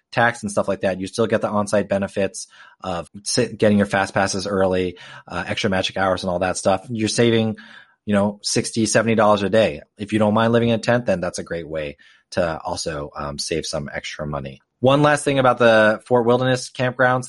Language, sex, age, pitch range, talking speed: English, male, 30-49, 100-125 Hz, 210 wpm